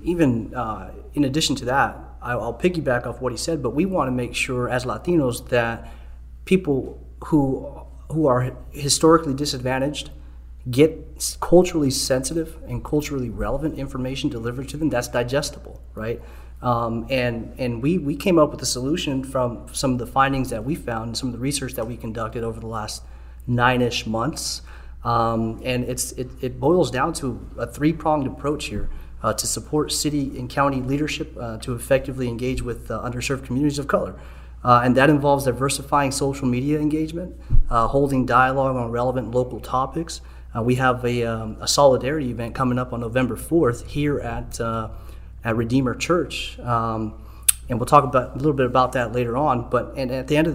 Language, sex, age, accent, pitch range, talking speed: English, male, 30-49, American, 115-140 Hz, 180 wpm